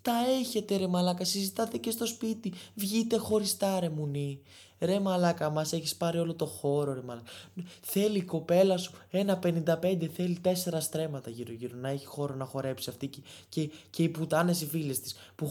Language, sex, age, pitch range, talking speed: Greek, male, 20-39, 125-195 Hz, 185 wpm